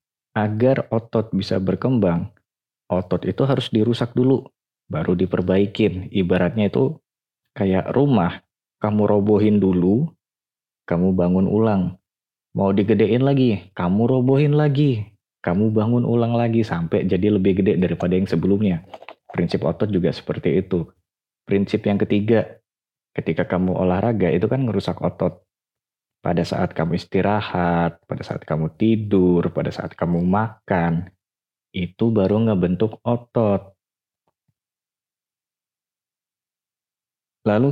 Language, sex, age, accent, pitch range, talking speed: Indonesian, male, 20-39, native, 90-110 Hz, 110 wpm